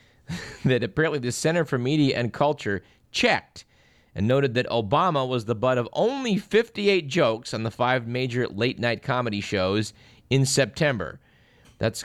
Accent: American